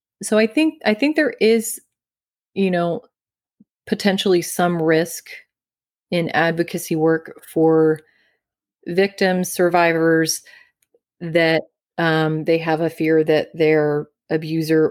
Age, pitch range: 30-49, 155-180 Hz